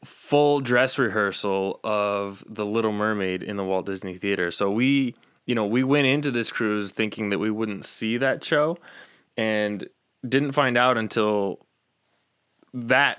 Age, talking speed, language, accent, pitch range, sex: 20-39, 155 wpm, English, American, 105-125 Hz, male